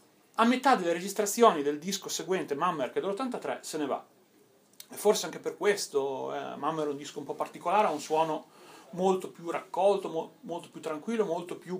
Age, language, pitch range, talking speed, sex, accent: 30-49, Italian, 150-210 Hz, 200 wpm, male, native